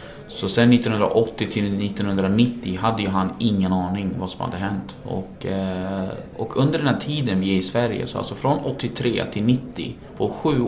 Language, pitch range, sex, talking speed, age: Finnish, 95-120 Hz, male, 180 wpm, 20-39